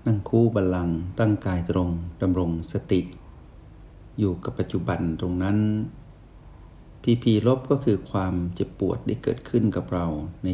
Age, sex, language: 60-79, male, Thai